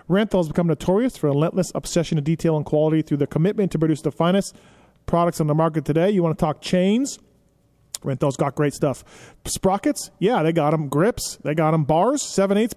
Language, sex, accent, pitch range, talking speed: English, male, American, 150-195 Hz, 210 wpm